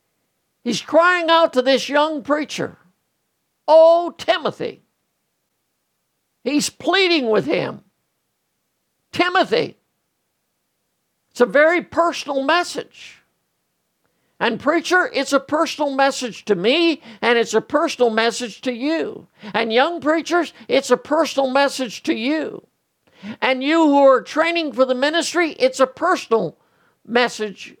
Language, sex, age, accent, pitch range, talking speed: English, male, 60-79, American, 245-325 Hz, 120 wpm